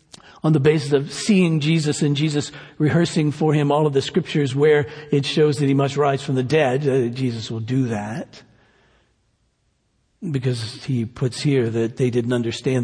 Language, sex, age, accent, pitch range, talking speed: English, male, 60-79, American, 115-155 Hz, 180 wpm